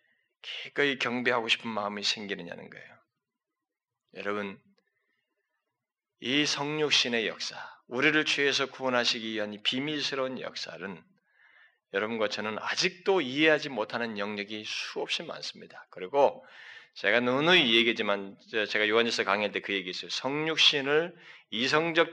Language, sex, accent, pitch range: Korean, male, native, 125-210 Hz